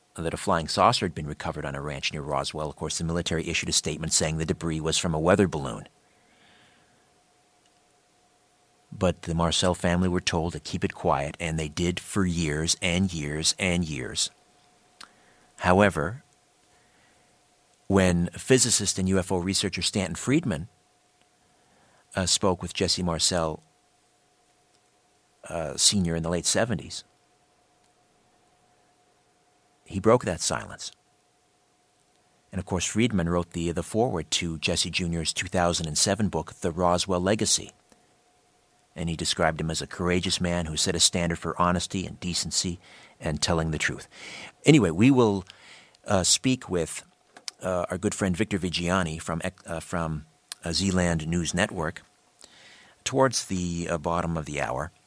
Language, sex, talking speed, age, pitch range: English, male, 145 wpm, 50-69, 80-95 Hz